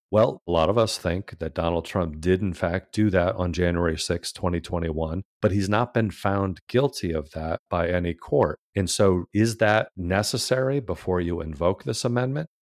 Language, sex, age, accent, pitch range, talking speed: English, male, 40-59, American, 85-105 Hz, 185 wpm